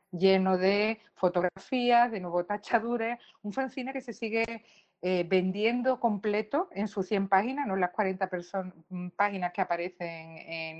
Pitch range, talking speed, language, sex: 180-200 Hz, 145 wpm, Spanish, female